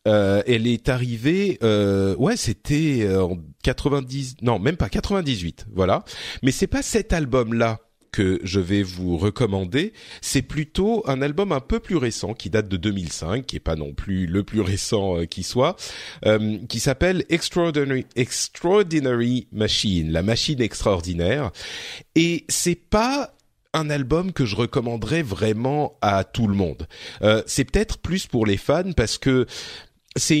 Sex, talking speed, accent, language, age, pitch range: male, 160 wpm, French, French, 40-59, 105-150 Hz